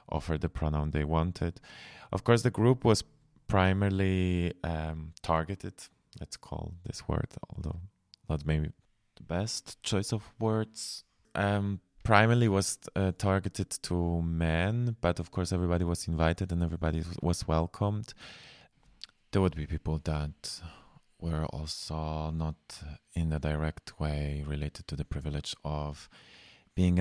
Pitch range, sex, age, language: 80-100 Hz, male, 20-39, English